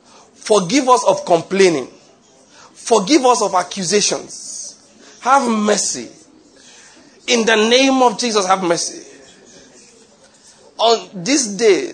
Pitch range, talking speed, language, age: 195-250 Hz, 100 wpm, English, 40-59